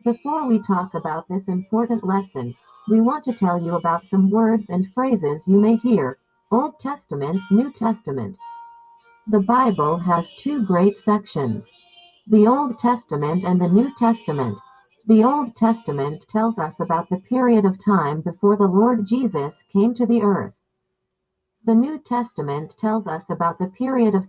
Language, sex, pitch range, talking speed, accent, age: Filipino, female, 175-245 Hz, 160 wpm, American, 50-69